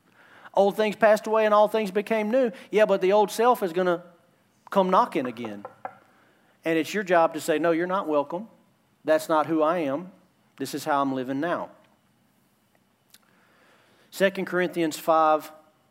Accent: American